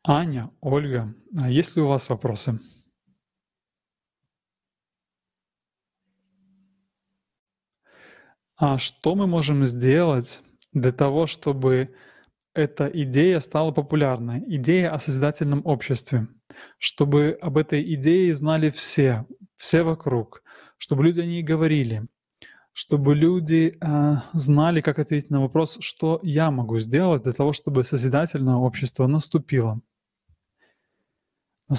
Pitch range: 130-160 Hz